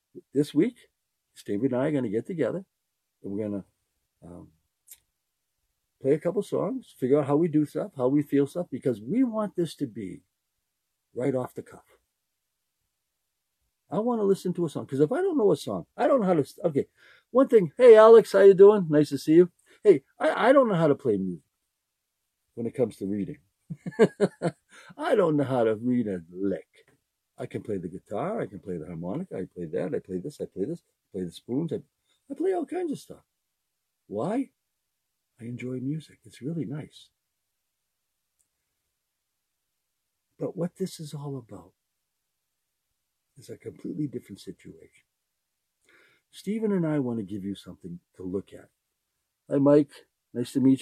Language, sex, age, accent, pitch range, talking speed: English, male, 60-79, American, 110-175 Hz, 180 wpm